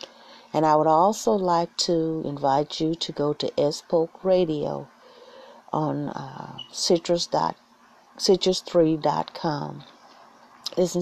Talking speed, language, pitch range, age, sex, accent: 125 wpm, English, 155-180 Hz, 40-59, female, American